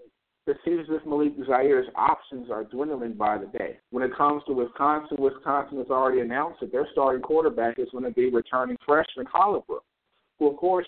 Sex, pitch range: male, 130-175 Hz